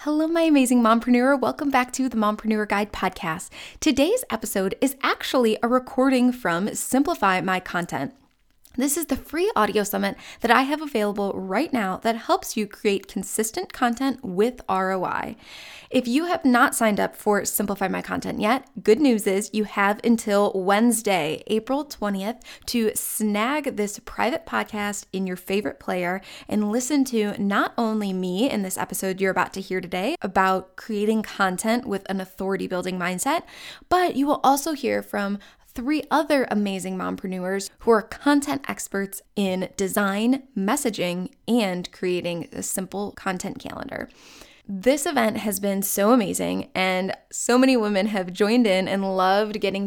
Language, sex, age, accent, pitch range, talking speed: English, female, 10-29, American, 195-255 Hz, 155 wpm